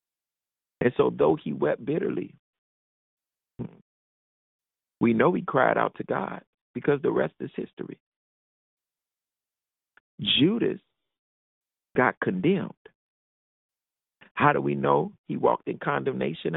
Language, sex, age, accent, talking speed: English, male, 50-69, American, 105 wpm